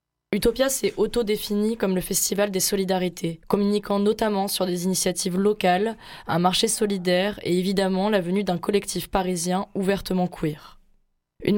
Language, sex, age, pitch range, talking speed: French, female, 20-39, 175-205 Hz, 140 wpm